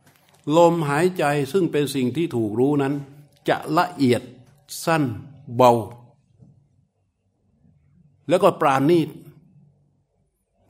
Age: 60-79